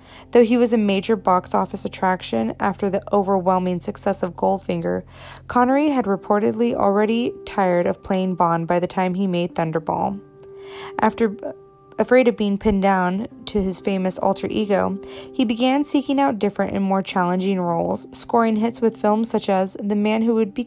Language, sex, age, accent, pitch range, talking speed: English, female, 20-39, American, 190-235 Hz, 170 wpm